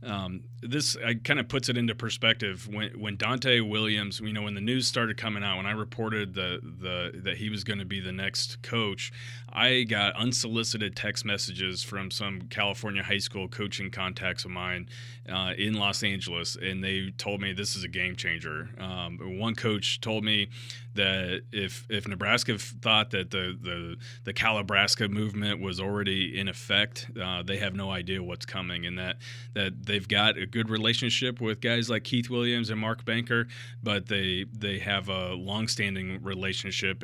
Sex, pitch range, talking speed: male, 95-115 Hz, 185 wpm